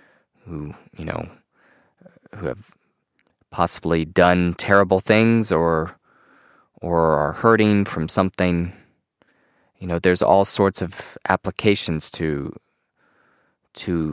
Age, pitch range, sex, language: 20-39, 80-95 Hz, male, English